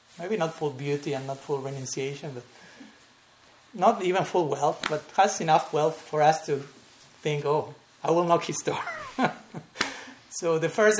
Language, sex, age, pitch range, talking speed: English, male, 30-49, 145-180 Hz, 165 wpm